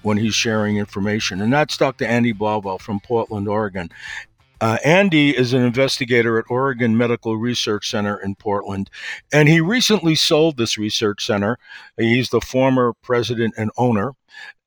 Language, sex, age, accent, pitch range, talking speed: English, male, 50-69, American, 105-130 Hz, 155 wpm